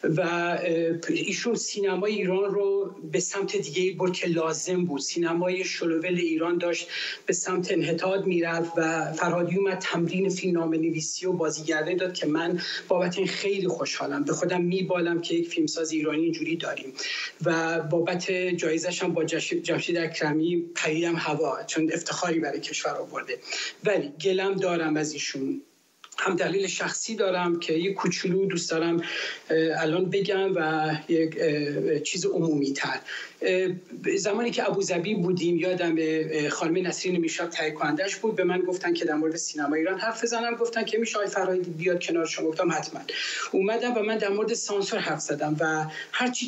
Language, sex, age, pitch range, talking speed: Persian, male, 30-49, 165-210 Hz, 150 wpm